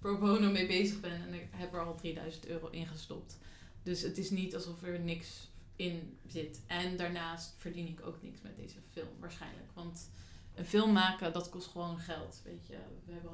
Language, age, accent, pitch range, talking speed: Dutch, 20-39, Dutch, 165-185 Hz, 205 wpm